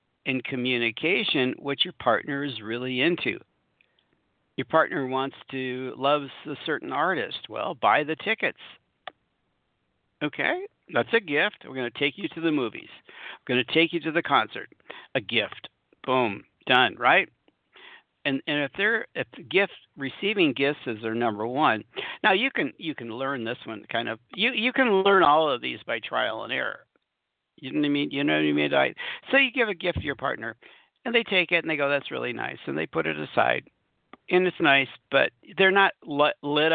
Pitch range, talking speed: 130-180 Hz, 185 wpm